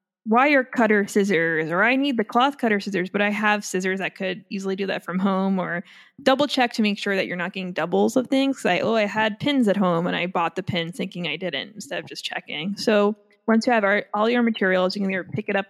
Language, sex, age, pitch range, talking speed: English, female, 20-39, 190-220 Hz, 255 wpm